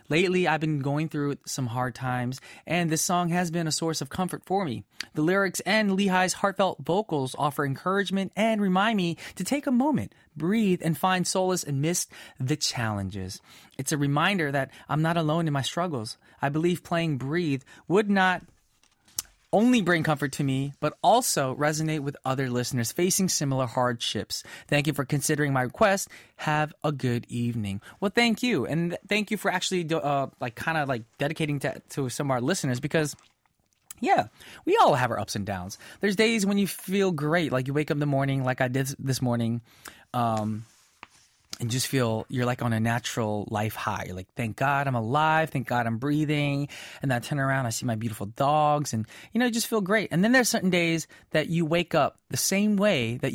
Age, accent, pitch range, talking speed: 20-39, American, 125-170 Hz, 200 wpm